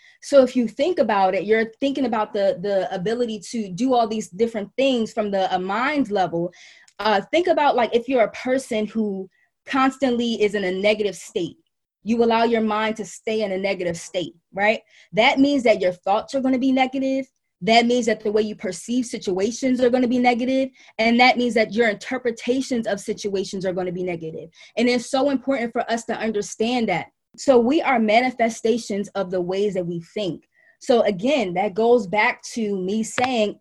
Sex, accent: female, American